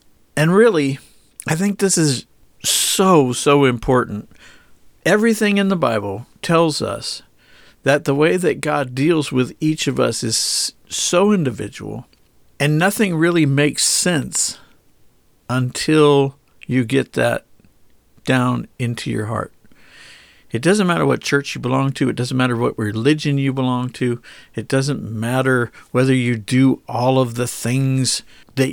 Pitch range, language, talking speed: 120-150 Hz, English, 140 wpm